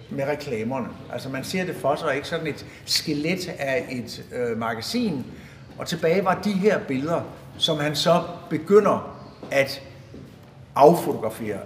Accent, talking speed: native, 140 wpm